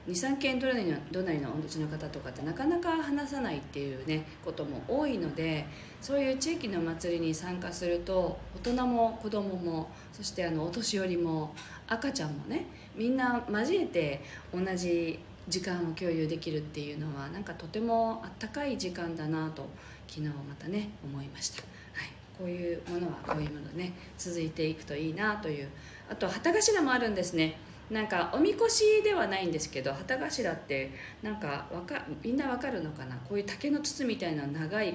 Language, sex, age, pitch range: Japanese, female, 40-59, 150-215 Hz